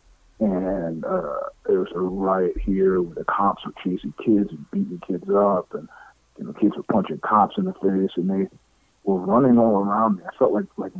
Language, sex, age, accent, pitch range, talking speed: English, male, 50-69, American, 95-120 Hz, 205 wpm